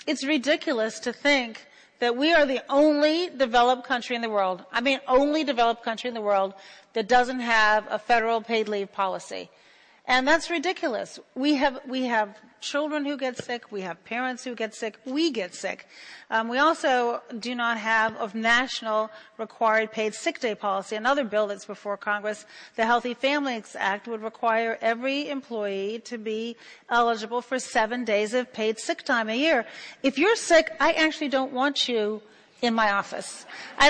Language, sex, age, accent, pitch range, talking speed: English, female, 40-59, American, 220-295 Hz, 175 wpm